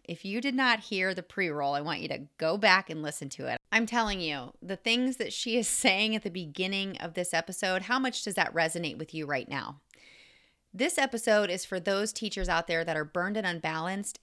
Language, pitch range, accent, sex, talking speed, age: English, 165-225 Hz, American, female, 230 wpm, 30-49